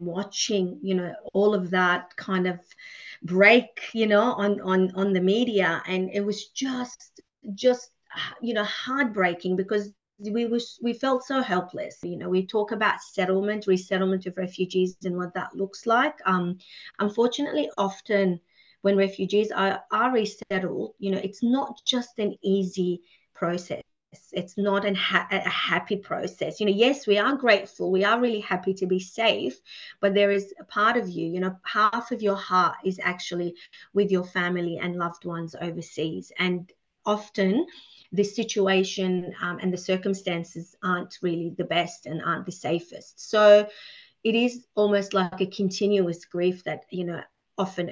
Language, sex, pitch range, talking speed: Urdu, female, 180-210 Hz, 165 wpm